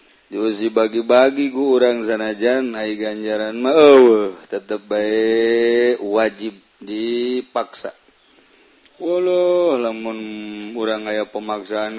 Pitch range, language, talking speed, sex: 110-120 Hz, Indonesian, 95 wpm, male